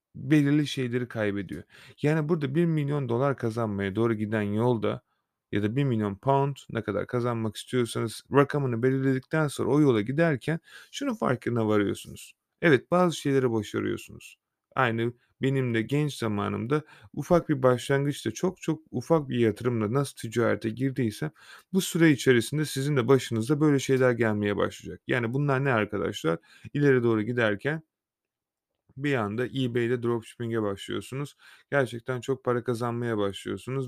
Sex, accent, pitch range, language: male, native, 115-145 Hz, Turkish